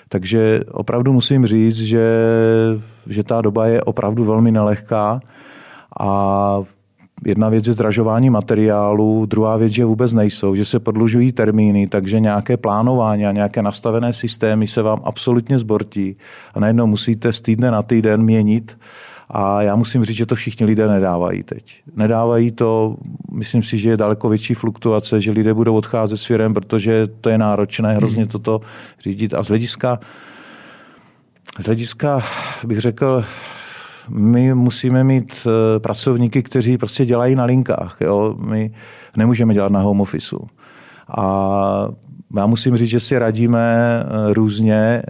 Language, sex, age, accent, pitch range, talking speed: Czech, male, 40-59, native, 105-115 Hz, 145 wpm